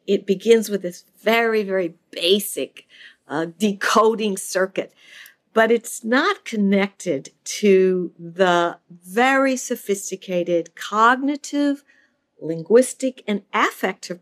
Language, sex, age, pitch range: English, female, 50-69, 200-260 Hz